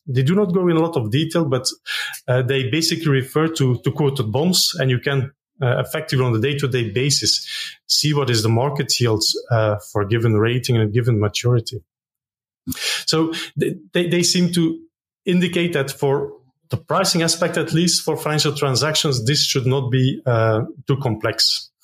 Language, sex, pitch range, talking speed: German, male, 125-155 Hz, 185 wpm